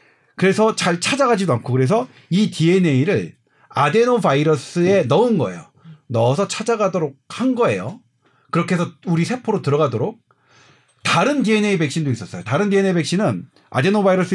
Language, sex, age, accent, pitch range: Korean, male, 40-59, native, 155-210 Hz